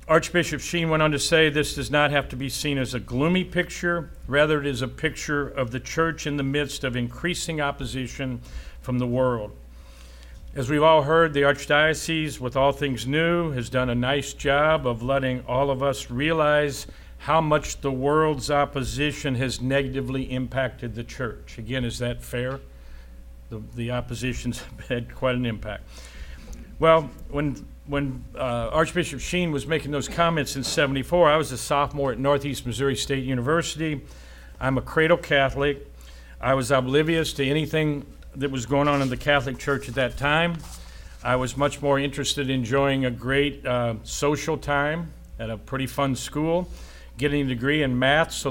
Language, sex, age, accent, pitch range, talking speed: English, male, 50-69, American, 125-145 Hz, 175 wpm